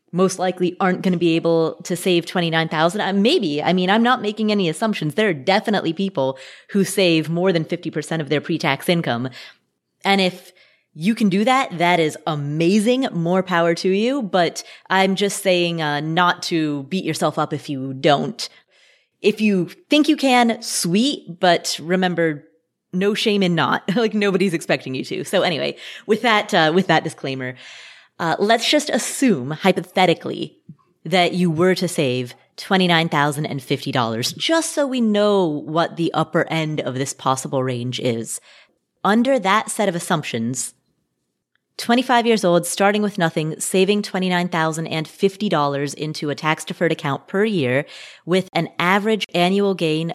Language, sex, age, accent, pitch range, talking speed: English, female, 20-39, American, 155-200 Hz, 155 wpm